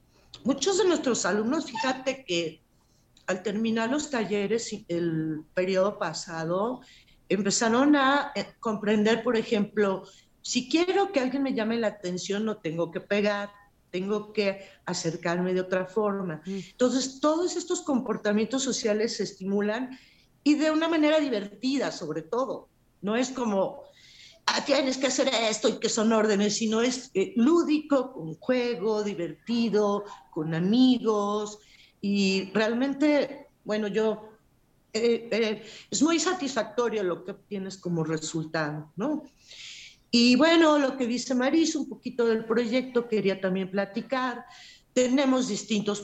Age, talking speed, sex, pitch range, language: 50-69, 130 wpm, female, 195-255 Hz, Spanish